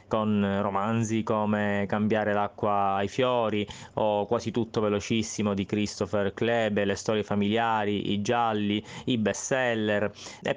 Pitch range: 105-120 Hz